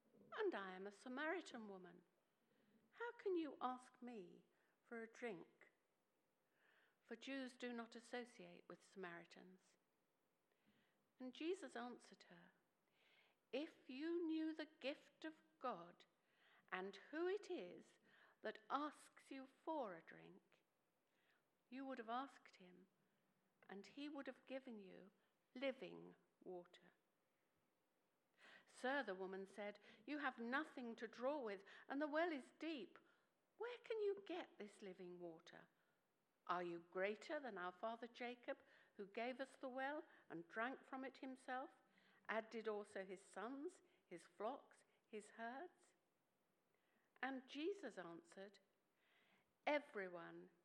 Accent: British